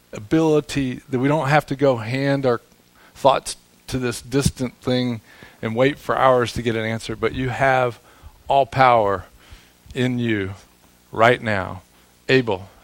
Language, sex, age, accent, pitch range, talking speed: English, male, 40-59, American, 90-130 Hz, 150 wpm